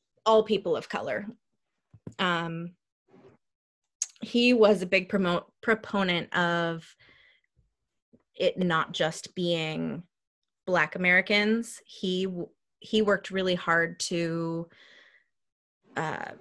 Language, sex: English, female